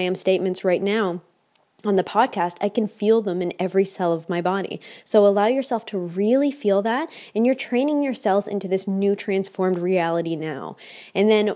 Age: 20-39